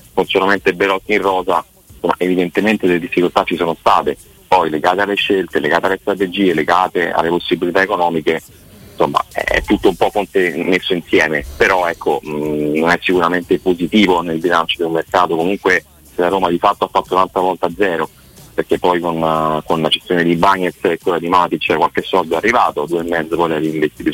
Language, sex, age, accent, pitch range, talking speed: Italian, male, 30-49, native, 80-95 Hz, 180 wpm